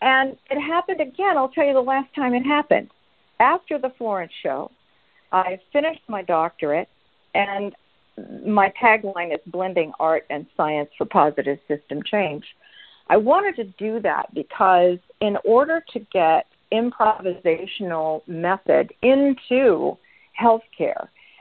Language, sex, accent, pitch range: English, female, American, 165-230 Hz